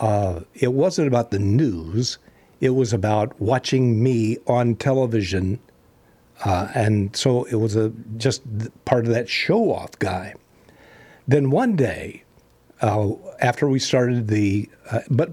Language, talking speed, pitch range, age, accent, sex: English, 135 wpm, 100-130 Hz, 60-79, American, male